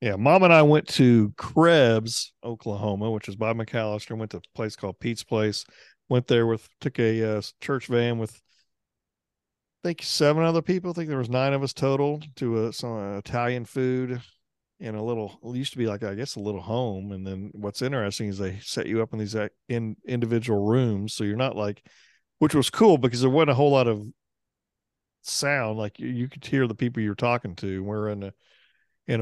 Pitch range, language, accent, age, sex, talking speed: 105-130 Hz, English, American, 40-59, male, 210 wpm